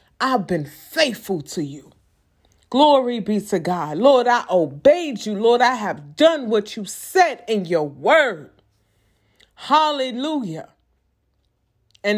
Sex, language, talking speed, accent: female, English, 125 wpm, American